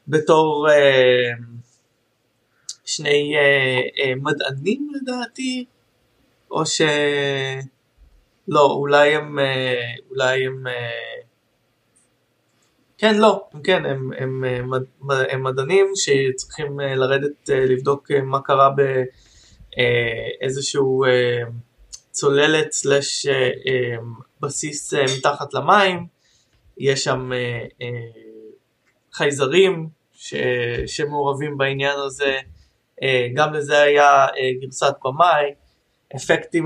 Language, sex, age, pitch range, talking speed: Hebrew, male, 20-39, 130-150 Hz, 70 wpm